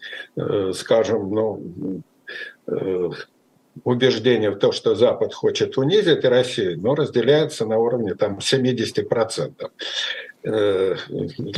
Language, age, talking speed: Russian, 50-69, 85 wpm